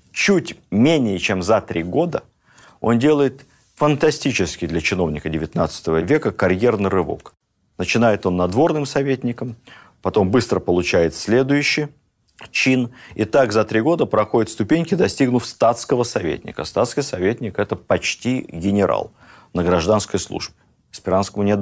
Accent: native